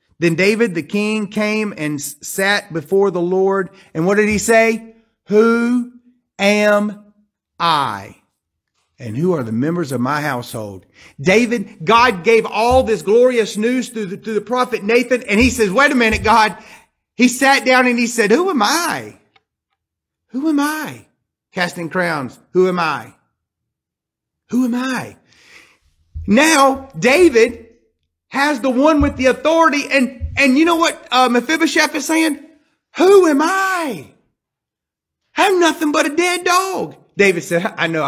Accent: American